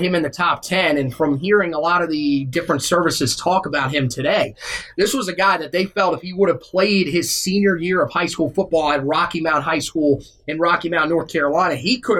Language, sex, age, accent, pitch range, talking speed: English, male, 30-49, American, 155-190 Hz, 240 wpm